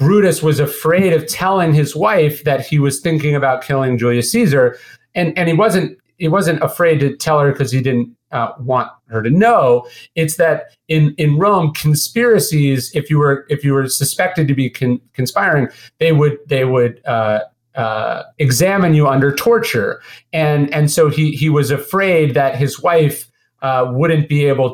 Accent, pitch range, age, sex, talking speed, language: American, 130-160 Hz, 40-59, male, 180 wpm, English